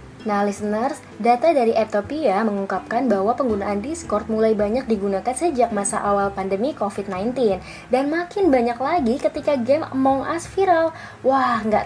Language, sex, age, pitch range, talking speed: Indonesian, female, 10-29, 210-270 Hz, 140 wpm